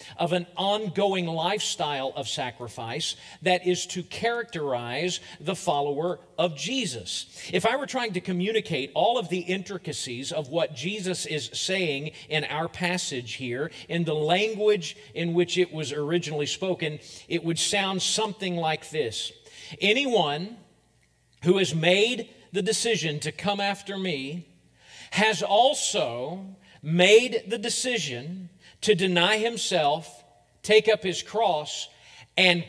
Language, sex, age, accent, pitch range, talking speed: English, male, 50-69, American, 170-215 Hz, 130 wpm